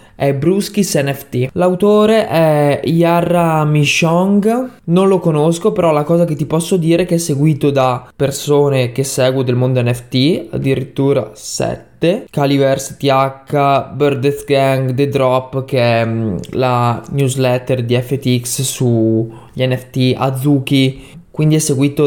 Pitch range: 130-160 Hz